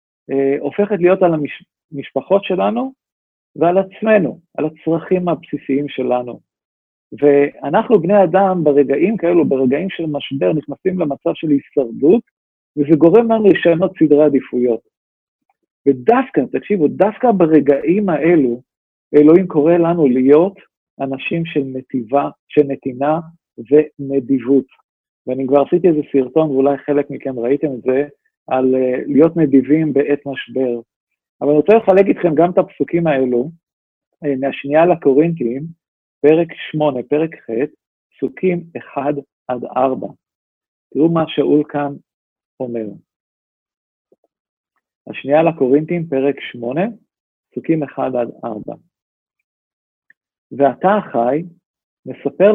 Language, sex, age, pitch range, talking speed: Hebrew, male, 50-69, 135-170 Hz, 110 wpm